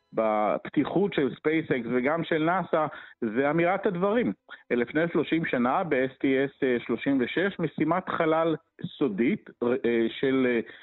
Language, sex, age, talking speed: Hebrew, male, 50-69, 100 wpm